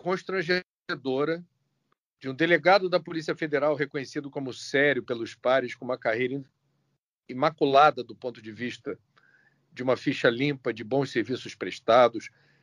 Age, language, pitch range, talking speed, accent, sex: 50-69, Portuguese, 125-150 Hz, 135 wpm, Brazilian, male